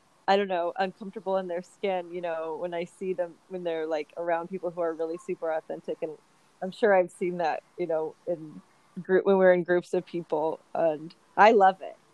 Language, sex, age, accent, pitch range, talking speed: English, female, 30-49, American, 175-200 Hz, 215 wpm